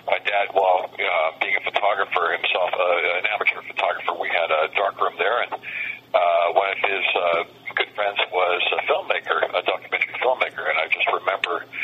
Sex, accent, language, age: male, American, English, 50-69